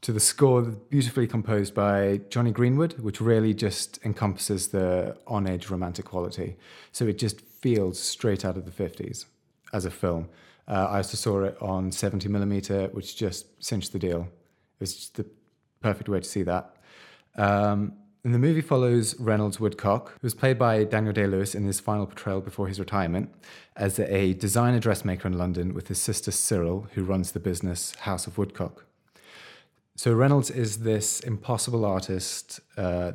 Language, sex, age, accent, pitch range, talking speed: English, male, 30-49, British, 95-110 Hz, 165 wpm